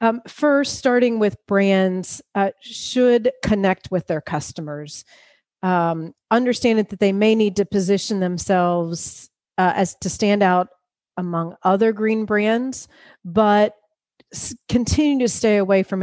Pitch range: 175-215 Hz